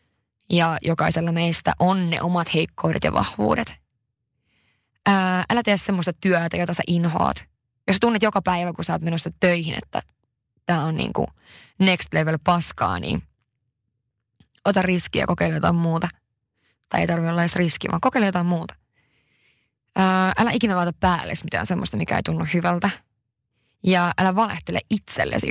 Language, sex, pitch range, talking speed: Finnish, female, 165-190 Hz, 150 wpm